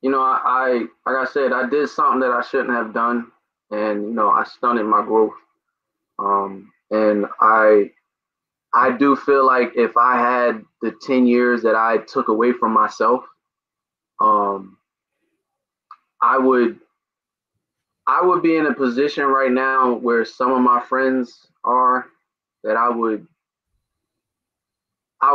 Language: English